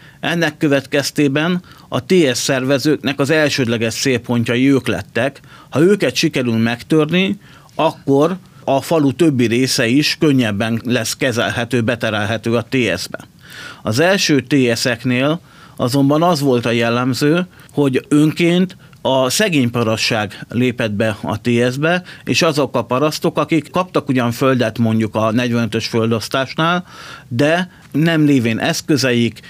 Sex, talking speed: male, 115 wpm